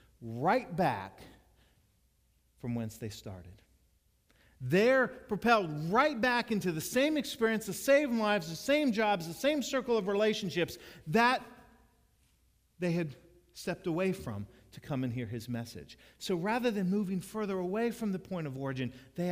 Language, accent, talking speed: English, American, 150 wpm